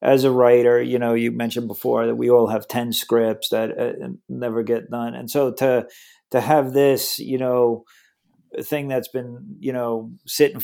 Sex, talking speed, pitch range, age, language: male, 185 wpm, 120-135 Hz, 40-59, English